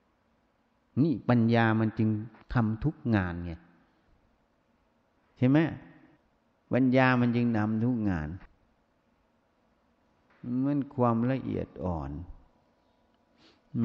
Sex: male